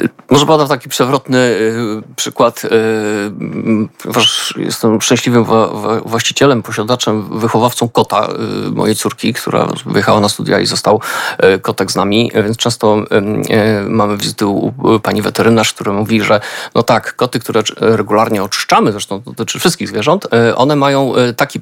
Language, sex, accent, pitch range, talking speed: Polish, male, native, 110-130 Hz, 125 wpm